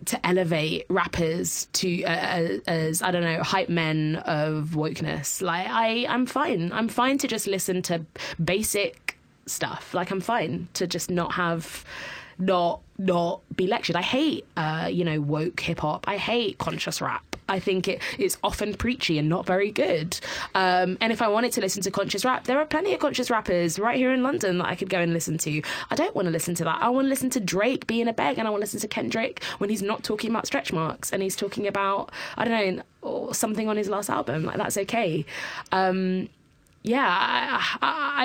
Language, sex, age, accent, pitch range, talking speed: English, female, 20-39, British, 165-215 Hz, 205 wpm